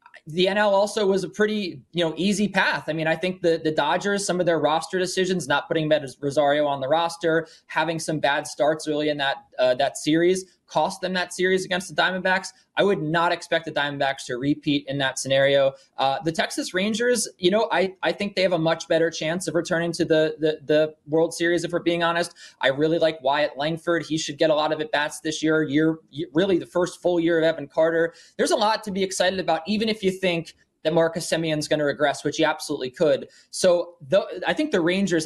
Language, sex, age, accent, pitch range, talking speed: English, male, 20-39, American, 150-180 Hz, 230 wpm